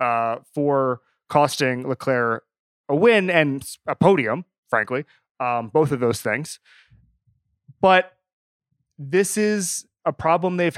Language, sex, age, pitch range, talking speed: English, male, 30-49, 130-175 Hz, 115 wpm